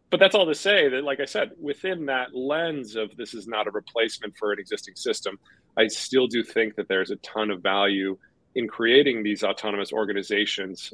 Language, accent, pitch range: English, American, 105-135 Hz